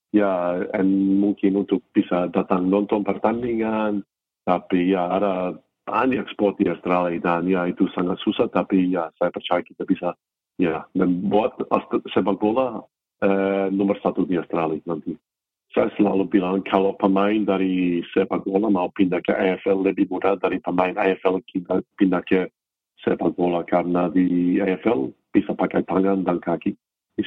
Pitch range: 85-95 Hz